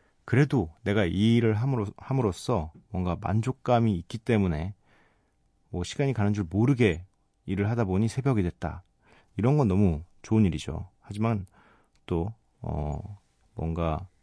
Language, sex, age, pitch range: Korean, male, 40-59, 90-115 Hz